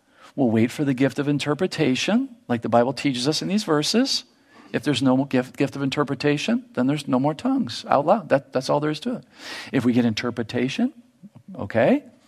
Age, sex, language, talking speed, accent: 50-69, male, English, 200 wpm, American